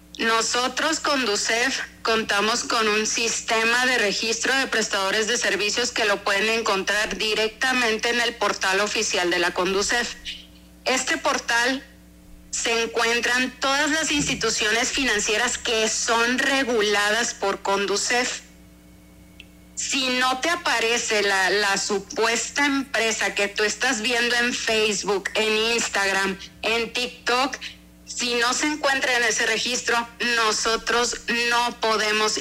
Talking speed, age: 120 wpm, 30-49